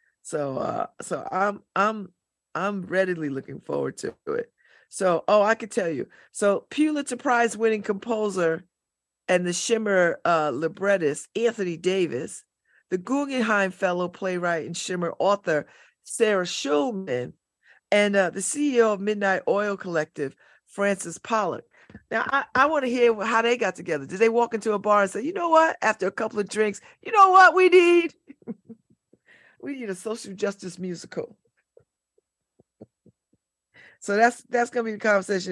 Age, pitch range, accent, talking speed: 40-59, 175-235 Hz, American, 155 wpm